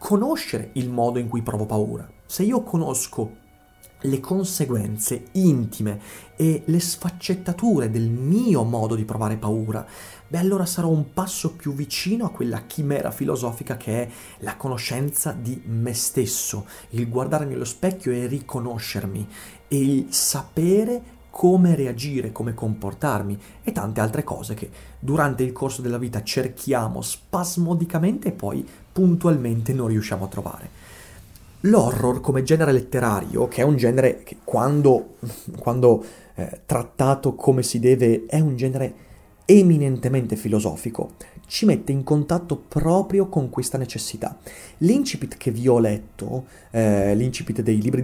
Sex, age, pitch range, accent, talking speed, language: male, 30-49, 115-160 Hz, native, 135 wpm, Italian